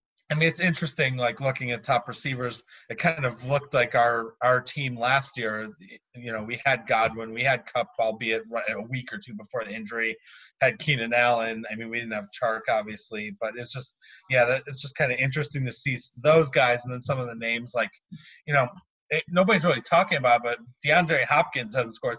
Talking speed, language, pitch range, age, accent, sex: 210 wpm, English, 115-140 Hz, 30-49, American, male